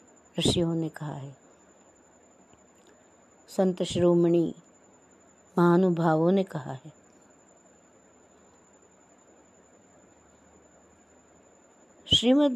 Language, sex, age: Hindi, female, 60-79